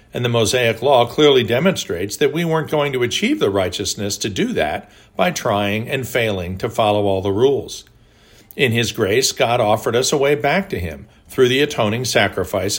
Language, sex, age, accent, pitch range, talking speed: English, male, 50-69, American, 105-135 Hz, 190 wpm